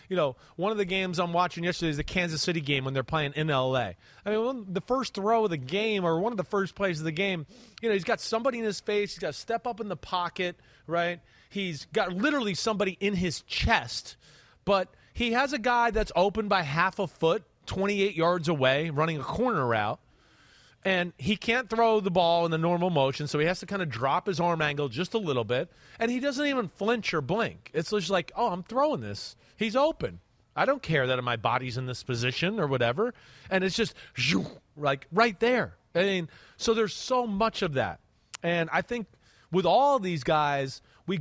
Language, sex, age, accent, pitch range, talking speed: English, male, 30-49, American, 155-215 Hz, 220 wpm